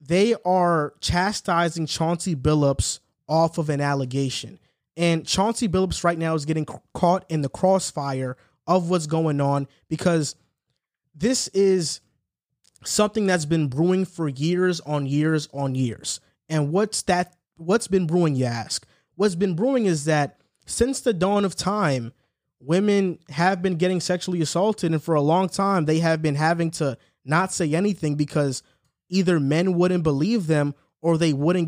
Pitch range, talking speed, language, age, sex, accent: 150-180 Hz, 155 wpm, English, 20-39, male, American